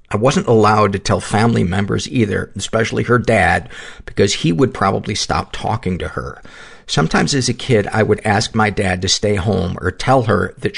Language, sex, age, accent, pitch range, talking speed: English, male, 50-69, American, 95-115 Hz, 195 wpm